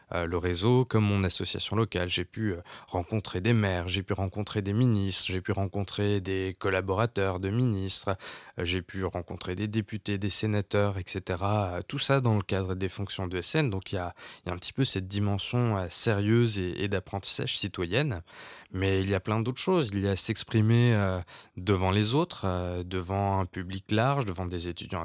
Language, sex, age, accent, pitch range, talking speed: French, male, 20-39, French, 95-115 Hz, 185 wpm